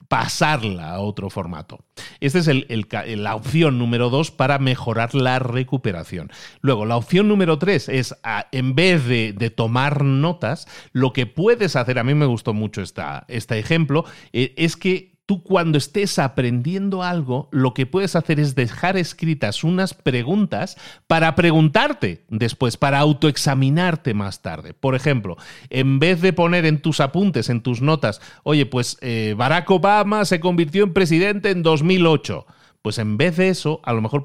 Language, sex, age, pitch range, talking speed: Spanish, male, 40-59, 115-170 Hz, 160 wpm